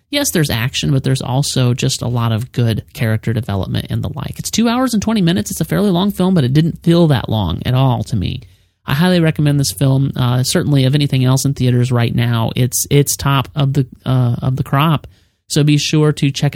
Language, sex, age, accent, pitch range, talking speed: English, male, 30-49, American, 125-165 Hz, 235 wpm